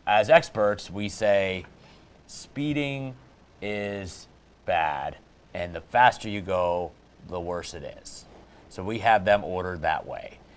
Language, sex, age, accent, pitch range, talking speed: English, male, 30-49, American, 85-105 Hz, 130 wpm